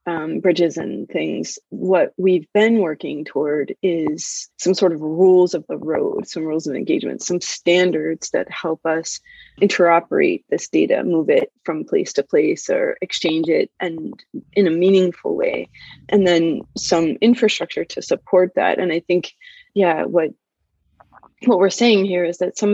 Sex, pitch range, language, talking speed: female, 170-210 Hz, English, 165 wpm